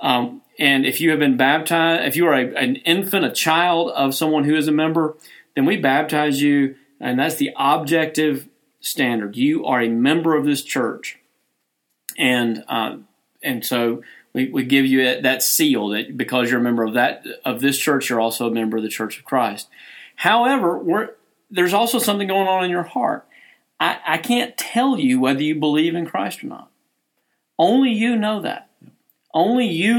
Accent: American